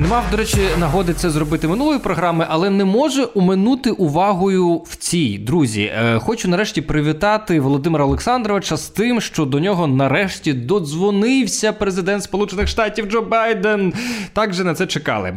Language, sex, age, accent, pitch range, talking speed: Ukrainian, male, 20-39, native, 155-215 Hz, 150 wpm